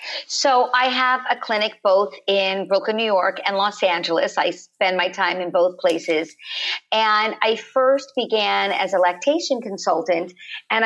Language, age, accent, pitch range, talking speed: English, 50-69, American, 200-245 Hz, 160 wpm